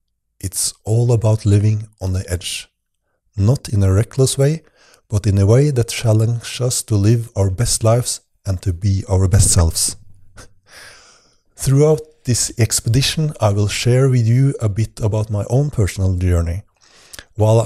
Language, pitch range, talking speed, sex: English, 100-120 Hz, 155 wpm, male